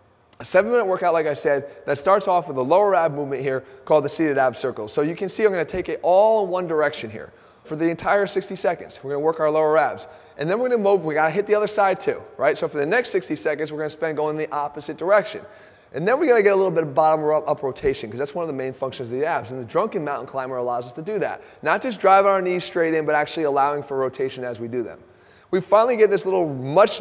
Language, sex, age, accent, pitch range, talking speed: English, male, 30-49, American, 140-190 Hz, 280 wpm